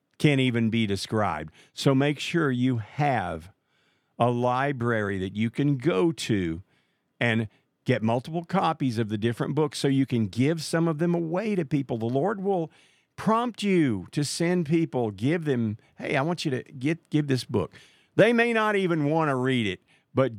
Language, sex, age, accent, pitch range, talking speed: English, male, 50-69, American, 115-160 Hz, 180 wpm